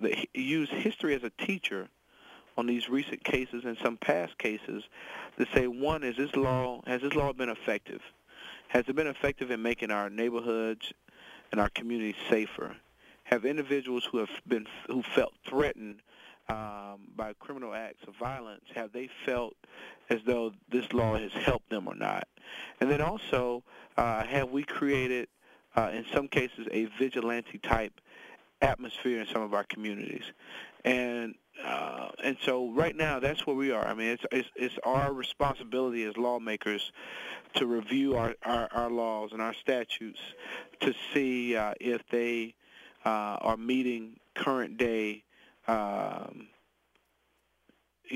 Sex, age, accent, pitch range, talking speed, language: male, 40-59, American, 110-130 Hz, 150 wpm, English